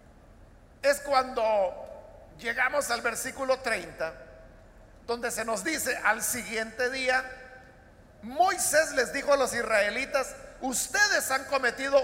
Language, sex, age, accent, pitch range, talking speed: Spanish, male, 50-69, Mexican, 225-305 Hz, 110 wpm